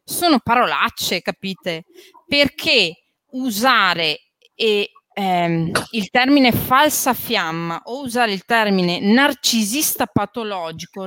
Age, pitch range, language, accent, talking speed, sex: 30-49, 190-285 Hz, Italian, native, 85 wpm, female